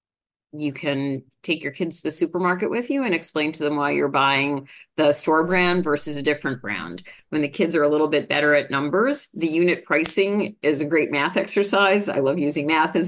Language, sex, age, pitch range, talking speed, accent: English, female, 40-59, 145-180 Hz, 215 wpm, American